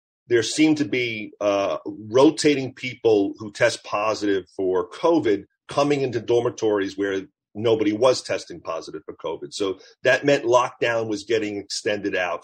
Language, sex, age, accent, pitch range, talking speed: English, male, 40-59, American, 105-150 Hz, 145 wpm